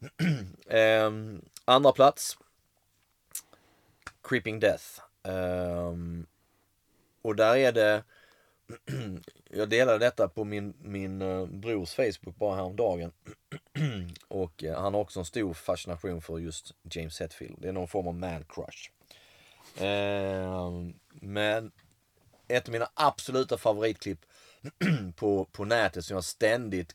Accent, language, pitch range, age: native, Swedish, 85-105 Hz, 30-49